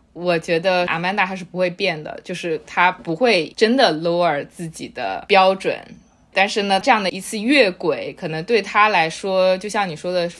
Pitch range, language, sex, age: 165-205 Hz, Chinese, female, 20-39